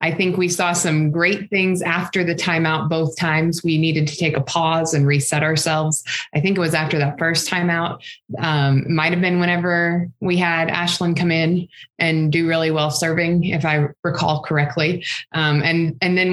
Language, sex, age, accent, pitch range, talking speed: English, female, 20-39, American, 155-185 Hz, 185 wpm